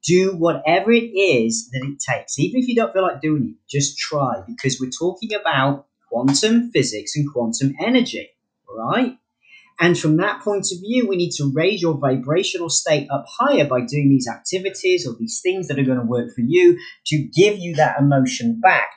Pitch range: 130-180 Hz